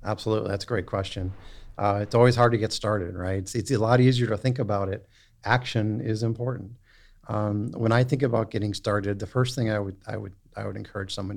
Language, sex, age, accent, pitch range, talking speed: English, male, 50-69, American, 100-125 Hz, 225 wpm